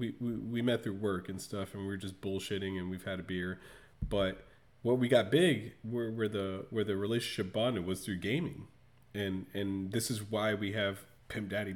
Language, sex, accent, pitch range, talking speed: English, male, American, 95-130 Hz, 210 wpm